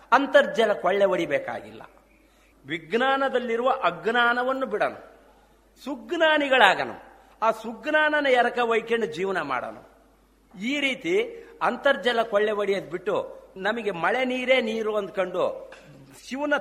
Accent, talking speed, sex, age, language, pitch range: native, 90 wpm, male, 50-69, Kannada, 195-255 Hz